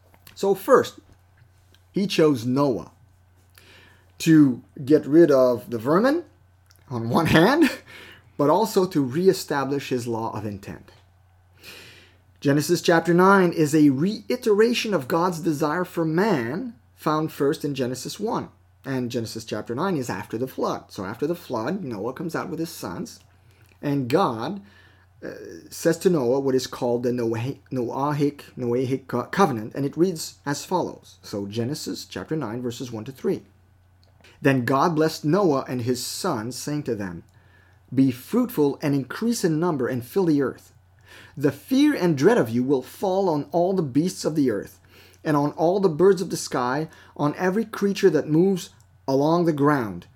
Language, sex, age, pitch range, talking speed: English, male, 30-49, 105-165 Hz, 160 wpm